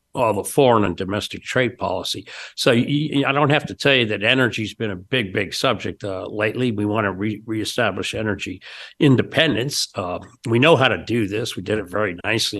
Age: 60-79